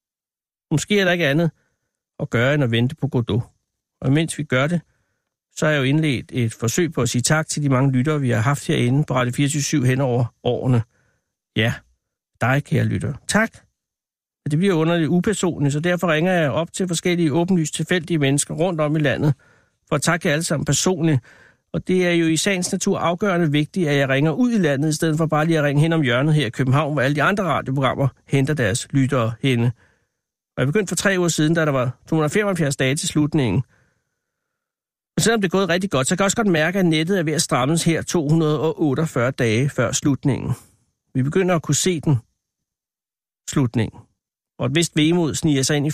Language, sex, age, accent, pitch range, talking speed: Danish, male, 60-79, native, 130-165 Hz, 210 wpm